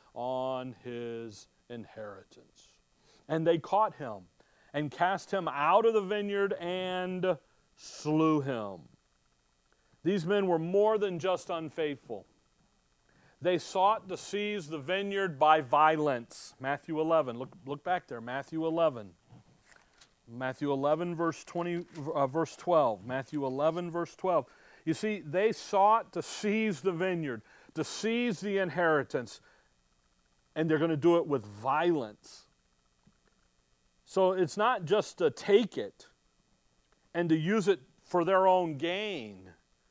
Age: 40-59